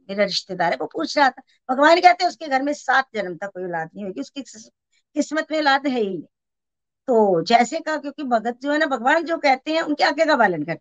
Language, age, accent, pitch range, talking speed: Hindi, 60-79, native, 190-285 Hz, 145 wpm